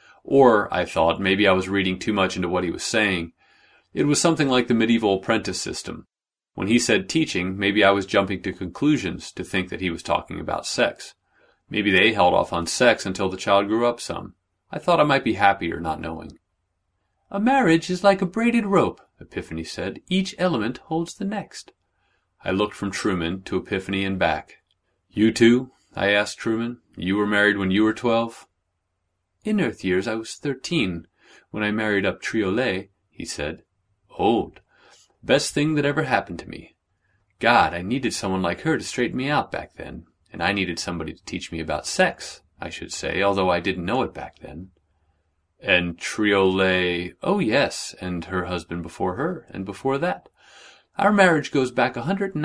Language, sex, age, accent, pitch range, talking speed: English, male, 30-49, American, 95-135 Hz, 190 wpm